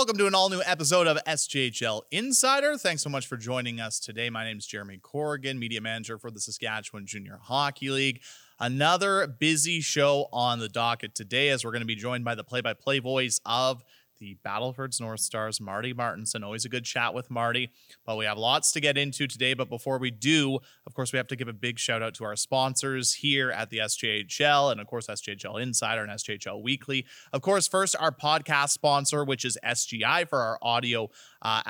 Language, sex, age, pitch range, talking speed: English, male, 30-49, 115-150 Hz, 205 wpm